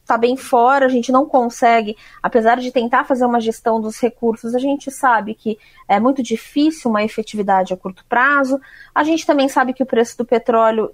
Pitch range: 230-290 Hz